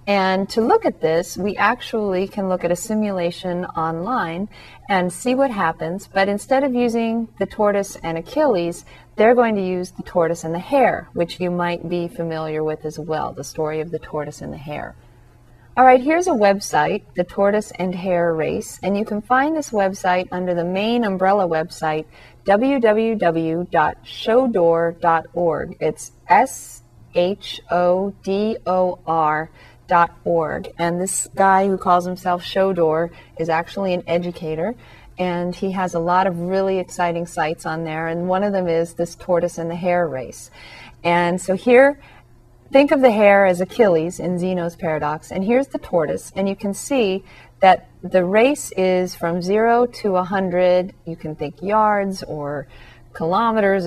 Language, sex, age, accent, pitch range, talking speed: English, female, 40-59, American, 165-200 Hz, 160 wpm